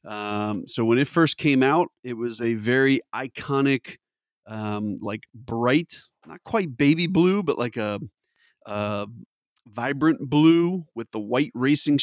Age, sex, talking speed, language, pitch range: 30-49, male, 145 wpm, English, 110-150 Hz